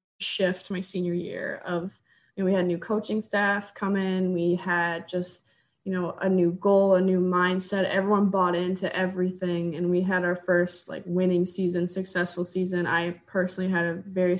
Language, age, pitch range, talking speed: English, 20-39, 175-200 Hz, 185 wpm